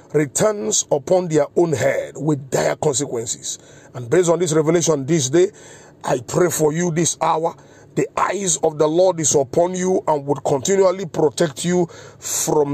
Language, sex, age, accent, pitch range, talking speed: English, male, 50-69, Nigerian, 150-190 Hz, 165 wpm